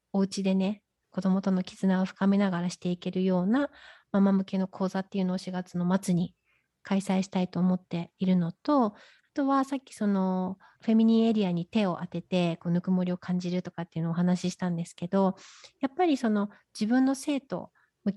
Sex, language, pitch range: female, Japanese, 180-220 Hz